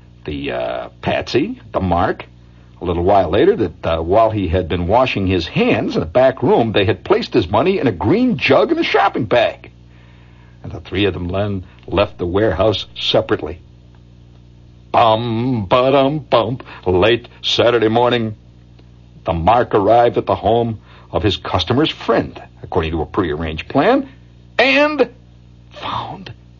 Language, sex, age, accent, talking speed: English, male, 60-79, American, 155 wpm